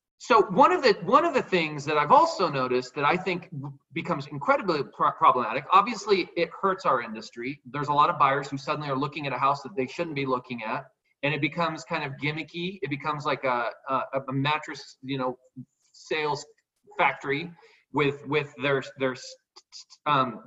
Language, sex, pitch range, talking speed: English, male, 140-200 Hz, 190 wpm